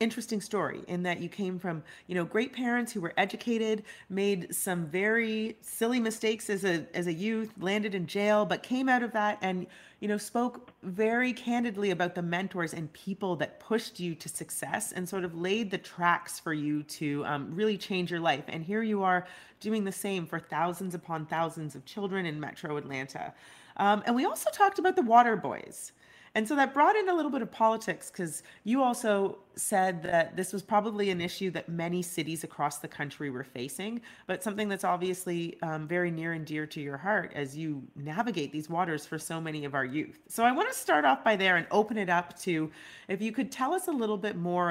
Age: 30-49